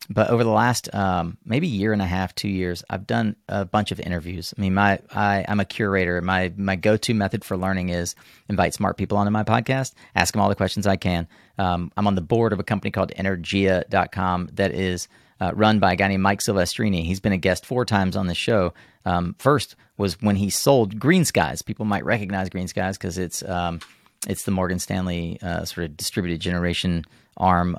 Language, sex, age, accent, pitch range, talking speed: English, male, 30-49, American, 90-105 Hz, 215 wpm